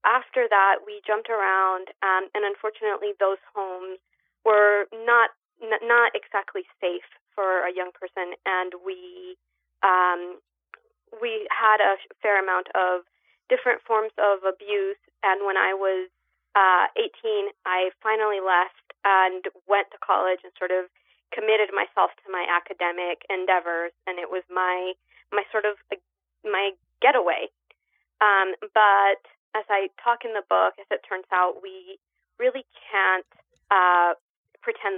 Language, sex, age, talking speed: English, female, 20-39, 140 wpm